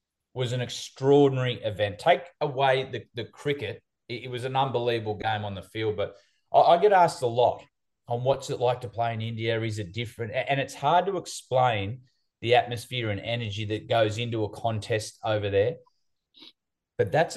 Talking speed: 185 wpm